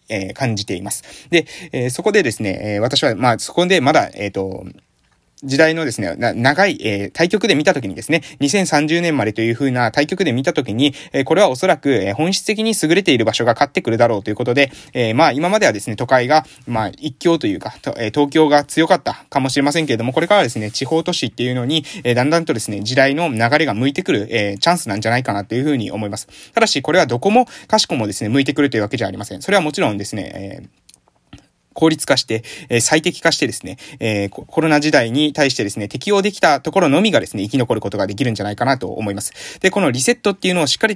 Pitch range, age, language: 110-160 Hz, 20-39, Japanese